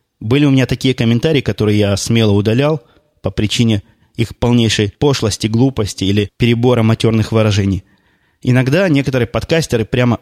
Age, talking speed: 20-39, 135 wpm